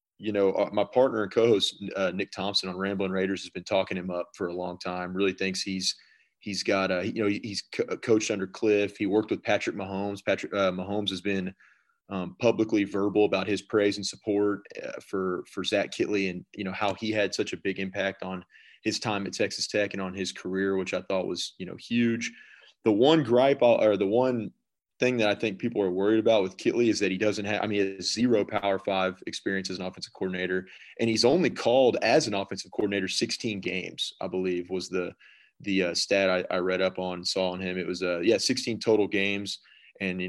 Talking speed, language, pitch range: 225 wpm, English, 95-105 Hz